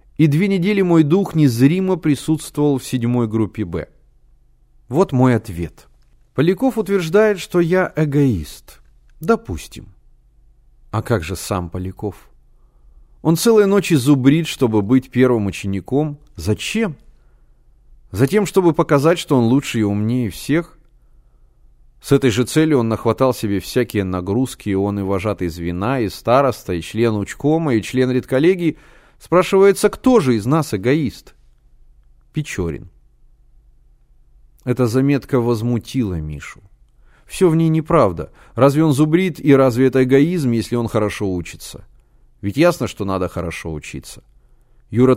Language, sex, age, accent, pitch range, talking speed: Russian, male, 30-49, native, 105-155 Hz, 130 wpm